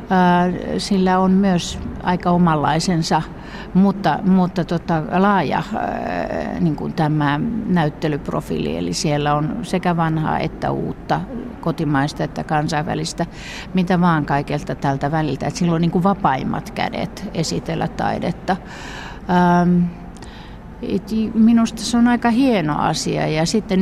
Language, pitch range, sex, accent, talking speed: Finnish, 150-190 Hz, female, native, 110 wpm